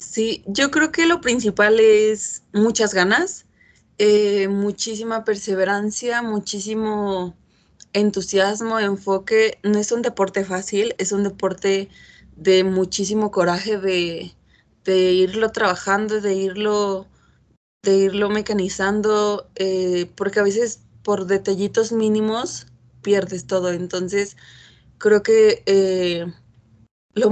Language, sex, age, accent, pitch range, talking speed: Spanish, female, 20-39, Mexican, 185-220 Hz, 105 wpm